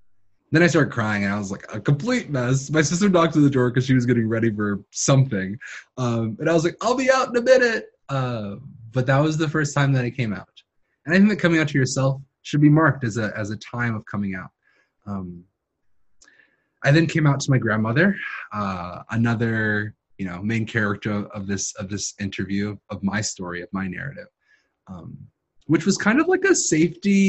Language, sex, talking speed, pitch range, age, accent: English, male, 215 wpm, 105-155 Hz, 20-39, American